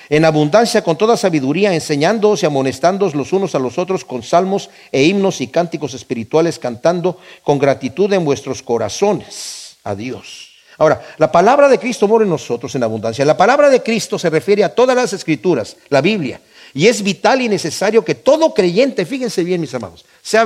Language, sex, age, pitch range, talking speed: Spanish, male, 50-69, 150-215 Hz, 185 wpm